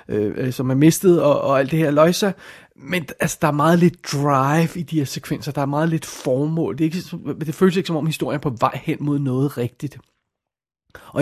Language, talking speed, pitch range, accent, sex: Danish, 220 wpm, 135-170 Hz, native, male